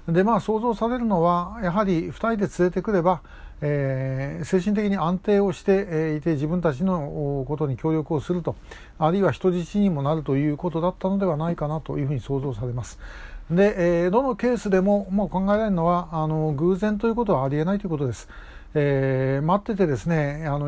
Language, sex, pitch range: Japanese, male, 140-185 Hz